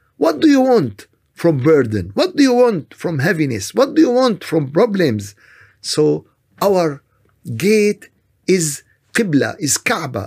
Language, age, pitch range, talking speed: Arabic, 50-69, 125-195 Hz, 145 wpm